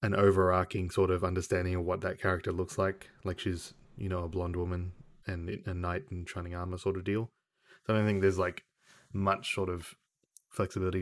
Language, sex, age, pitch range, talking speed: English, male, 20-39, 90-105 Hz, 200 wpm